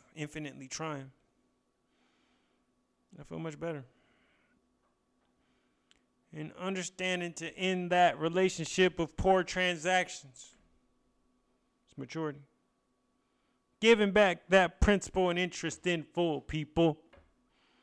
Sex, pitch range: male, 125-170 Hz